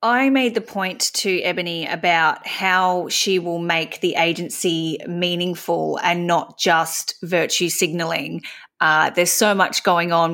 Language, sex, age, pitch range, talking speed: English, female, 30-49, 165-190 Hz, 140 wpm